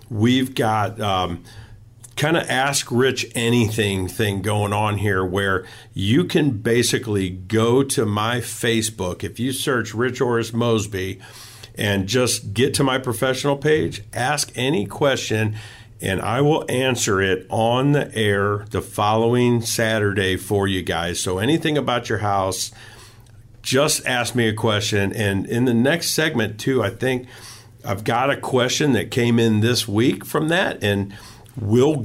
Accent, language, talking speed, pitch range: American, English, 150 wpm, 105-130 Hz